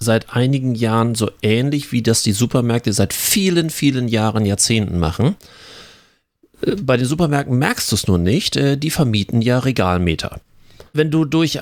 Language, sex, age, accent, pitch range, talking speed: German, male, 40-59, German, 110-145 Hz, 155 wpm